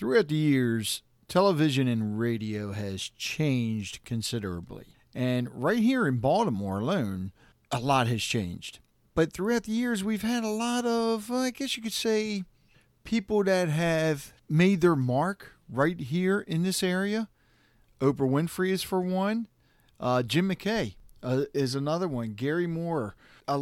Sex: male